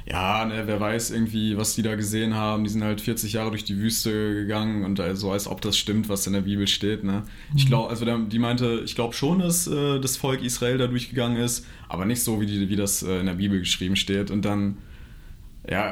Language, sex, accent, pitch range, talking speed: German, male, German, 100-120 Hz, 245 wpm